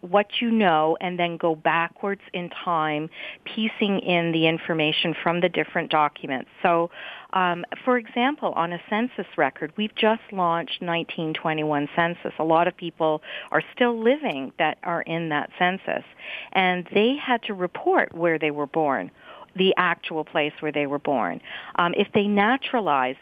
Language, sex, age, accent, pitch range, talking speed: English, female, 50-69, American, 160-190 Hz, 160 wpm